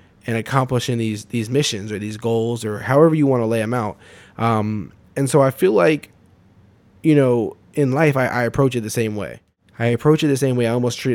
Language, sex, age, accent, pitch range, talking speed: English, male, 10-29, American, 105-125 Hz, 225 wpm